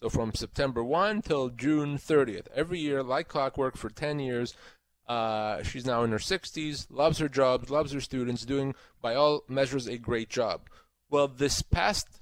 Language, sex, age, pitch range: English, male, 30-49, 125-155 Hz